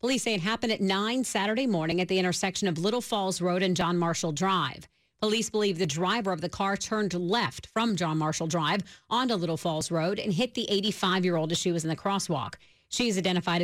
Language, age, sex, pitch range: English, 40-59, female, 175-215 Hz